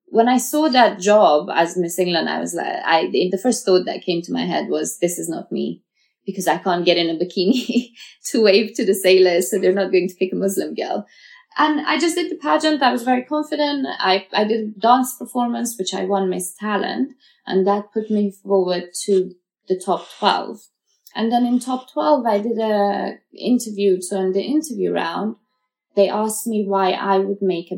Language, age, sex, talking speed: English, 20-39, female, 210 wpm